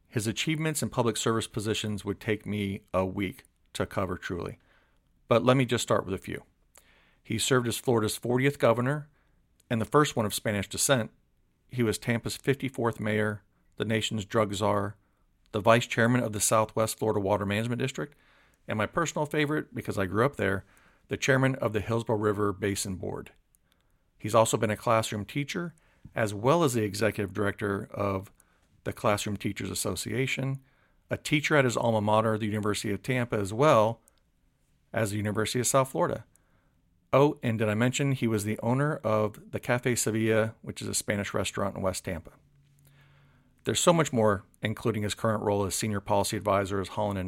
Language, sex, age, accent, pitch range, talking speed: English, male, 50-69, American, 105-125 Hz, 180 wpm